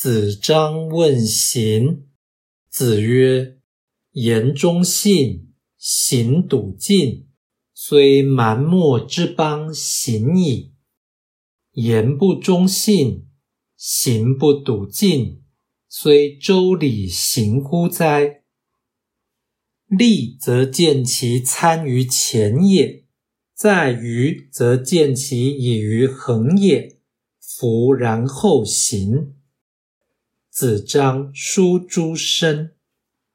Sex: male